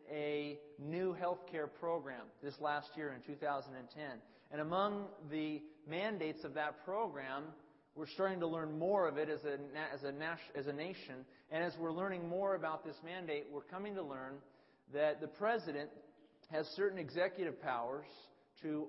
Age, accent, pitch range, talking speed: 40-59, American, 135-170 Hz, 160 wpm